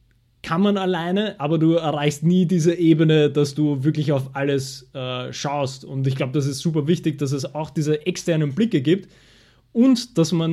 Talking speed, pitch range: 190 wpm, 140-170 Hz